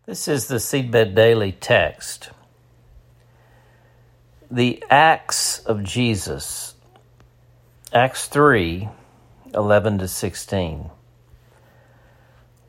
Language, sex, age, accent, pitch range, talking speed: English, male, 60-79, American, 100-130 Hz, 70 wpm